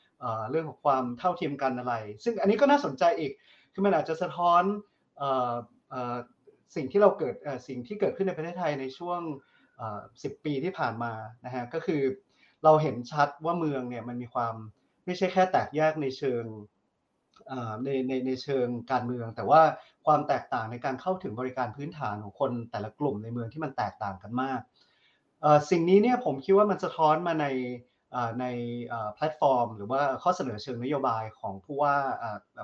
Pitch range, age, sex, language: 125-160 Hz, 30-49, male, Thai